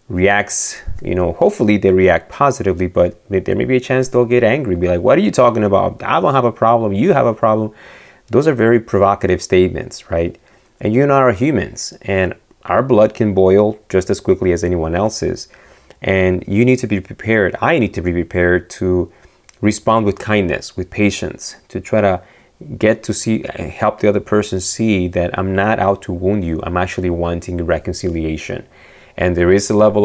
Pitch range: 90-110 Hz